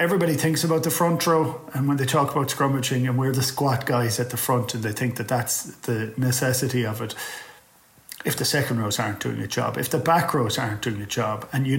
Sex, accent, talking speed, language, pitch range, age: male, Irish, 240 wpm, English, 115-135 Hz, 30-49